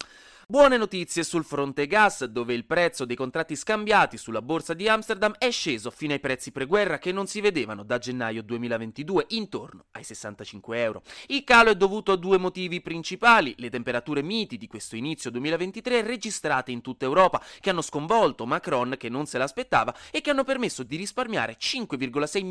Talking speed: 175 wpm